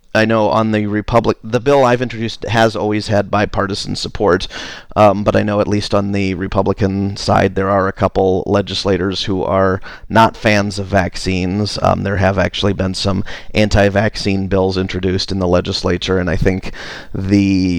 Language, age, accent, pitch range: English, 30-49, American, 95-105 Hz